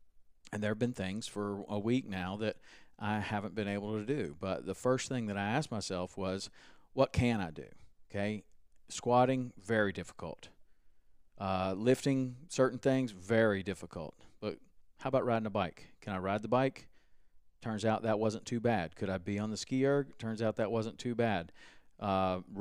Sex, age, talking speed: male, 40-59, 185 wpm